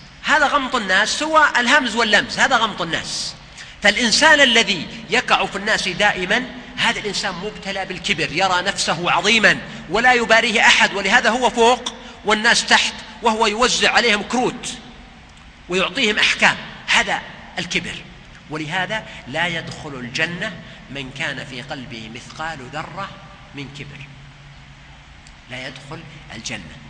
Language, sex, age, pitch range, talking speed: Arabic, male, 50-69, 155-230 Hz, 120 wpm